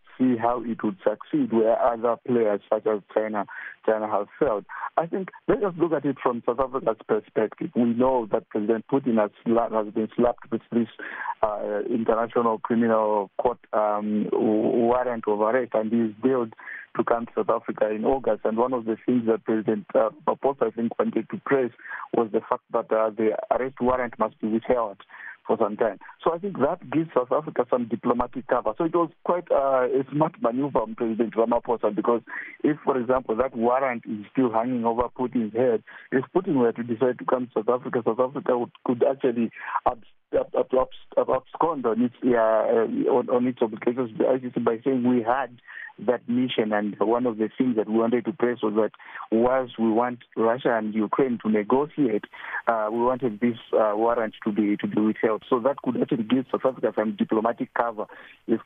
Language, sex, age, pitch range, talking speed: English, male, 50-69, 110-125 Hz, 190 wpm